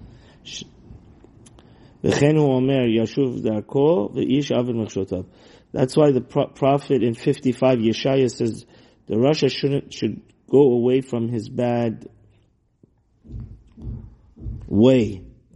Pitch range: 110-130 Hz